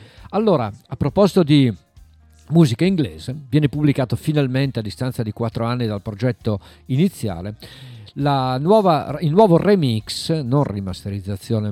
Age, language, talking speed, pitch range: 50-69, Italian, 125 wpm, 105-150 Hz